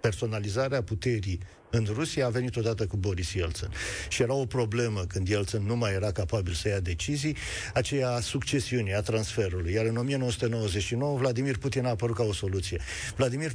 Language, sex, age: Romanian, male, 50-69